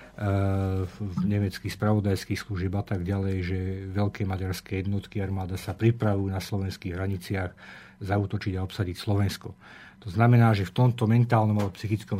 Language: Slovak